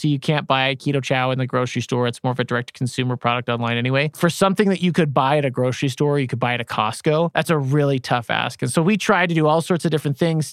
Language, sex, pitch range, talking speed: English, male, 130-160 Hz, 300 wpm